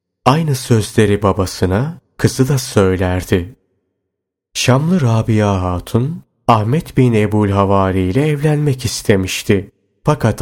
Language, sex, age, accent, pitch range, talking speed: Turkish, male, 30-49, native, 95-130 Hz, 90 wpm